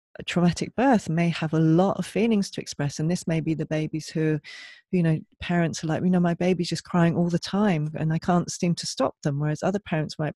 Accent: British